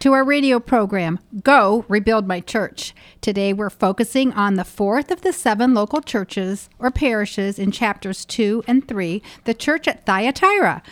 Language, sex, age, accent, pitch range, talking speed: English, female, 50-69, American, 190-265 Hz, 165 wpm